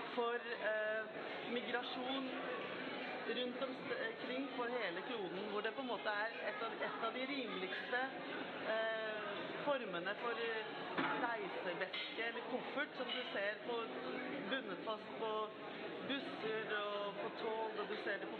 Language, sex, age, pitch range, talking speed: English, female, 40-59, 205-245 Hz, 140 wpm